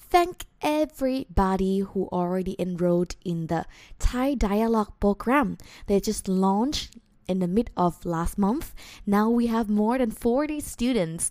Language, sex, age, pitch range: Thai, female, 20-39, 175-220 Hz